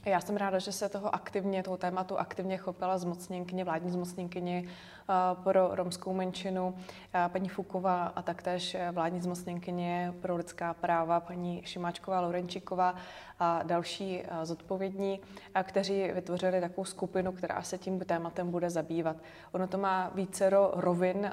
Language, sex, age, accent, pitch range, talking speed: Czech, female, 20-39, native, 170-185 Hz, 130 wpm